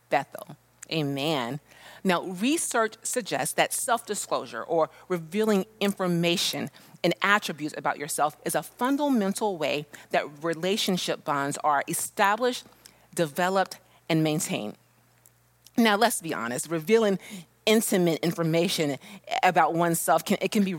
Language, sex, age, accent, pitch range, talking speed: English, female, 30-49, American, 165-230 Hz, 110 wpm